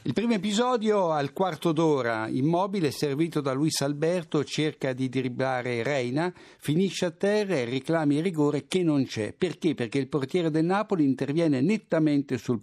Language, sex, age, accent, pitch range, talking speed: Italian, male, 60-79, native, 140-185 Hz, 160 wpm